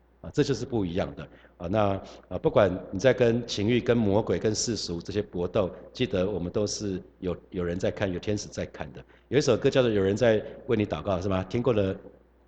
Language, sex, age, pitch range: Chinese, male, 50-69, 90-115 Hz